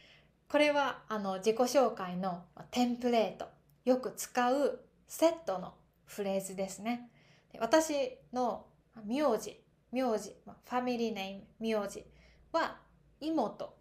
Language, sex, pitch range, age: Japanese, female, 195-280 Hz, 20-39